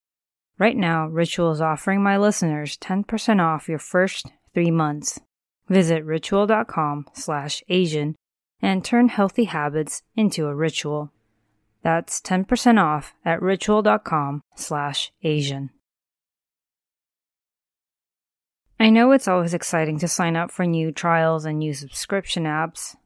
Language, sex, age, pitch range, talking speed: English, female, 20-39, 150-190 Hz, 120 wpm